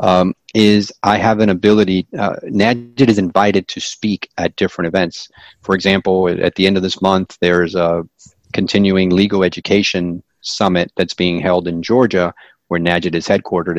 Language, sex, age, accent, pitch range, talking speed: English, male, 40-59, American, 90-100 Hz, 165 wpm